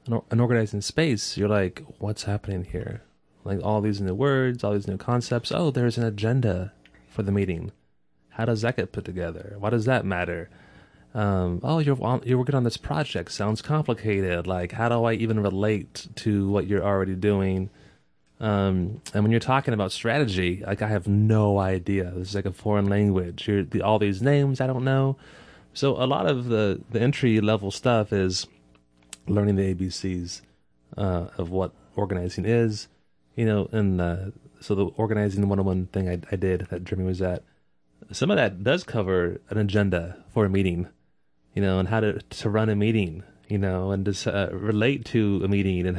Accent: American